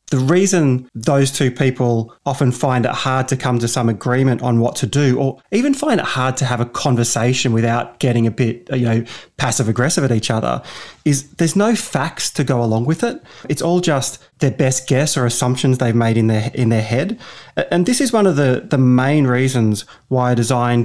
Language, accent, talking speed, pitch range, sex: English, Australian, 215 wpm, 120-155 Hz, male